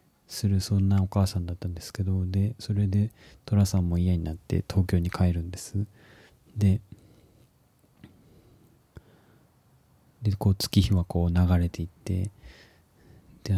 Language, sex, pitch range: Japanese, male, 95-110 Hz